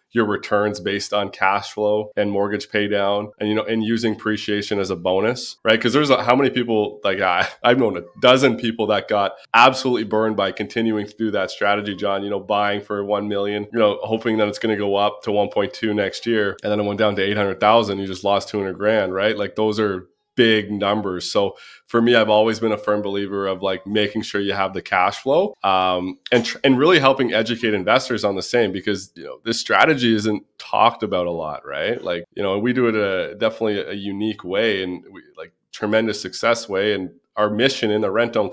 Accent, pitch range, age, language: American, 100-110 Hz, 20-39, English